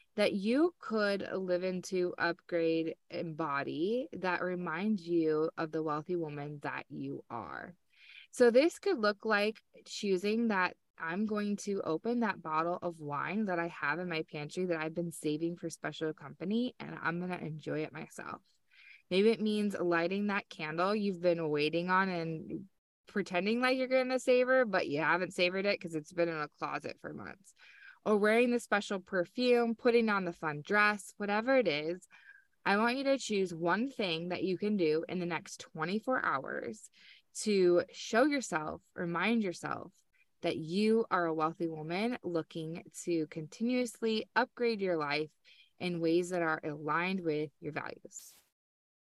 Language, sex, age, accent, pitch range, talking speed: English, female, 20-39, American, 165-220 Hz, 165 wpm